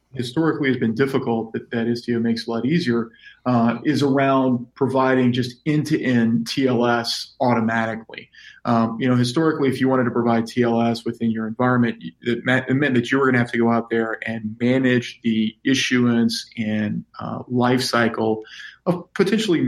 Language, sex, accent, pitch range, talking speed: English, male, American, 115-130 Hz, 160 wpm